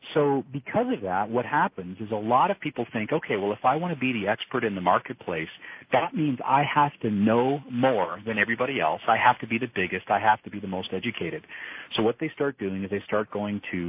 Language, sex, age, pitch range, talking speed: English, male, 40-59, 100-135 Hz, 245 wpm